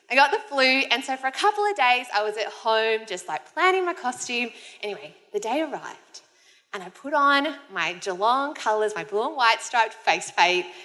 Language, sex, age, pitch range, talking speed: English, female, 20-39, 185-295 Hz, 210 wpm